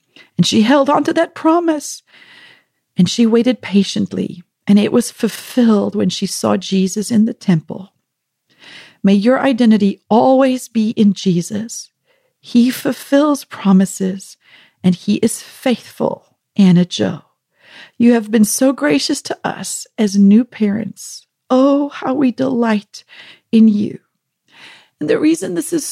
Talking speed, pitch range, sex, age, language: 135 wpm, 200-265 Hz, female, 40-59, English